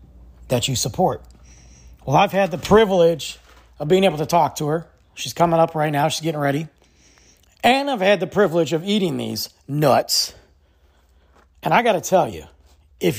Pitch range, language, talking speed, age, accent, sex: 95-150 Hz, English, 175 wpm, 40-59, American, male